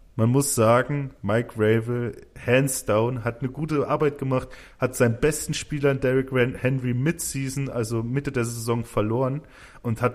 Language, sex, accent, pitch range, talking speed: German, male, German, 110-130 Hz, 160 wpm